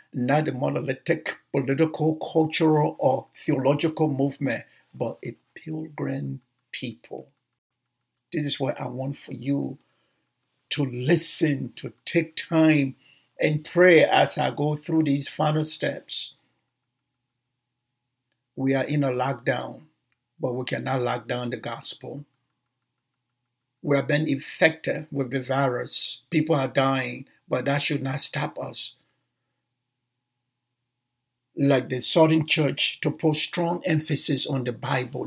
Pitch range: 125-155 Hz